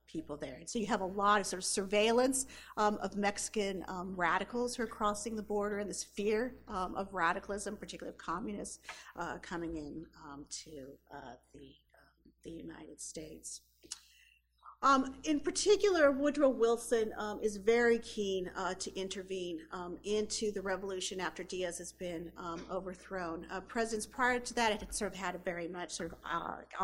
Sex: female